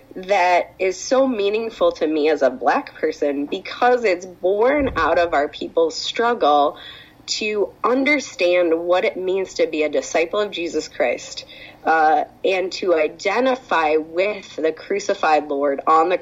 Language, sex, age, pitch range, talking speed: English, female, 20-39, 160-250 Hz, 150 wpm